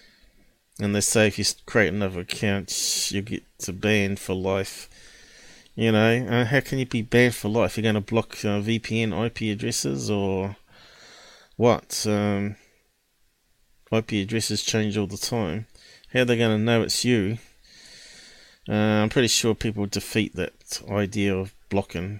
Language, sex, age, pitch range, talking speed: English, male, 30-49, 100-115 Hz, 160 wpm